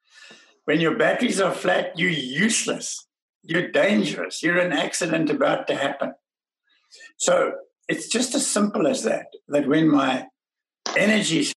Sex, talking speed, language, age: male, 135 wpm, English, 60-79